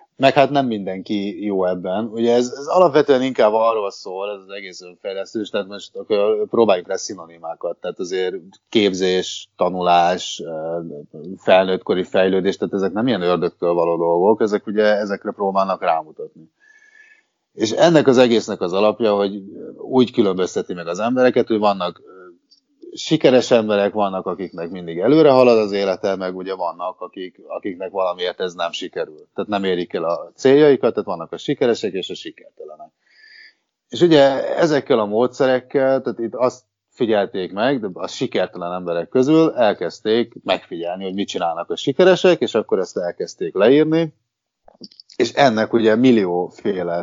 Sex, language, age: male, Hungarian, 30-49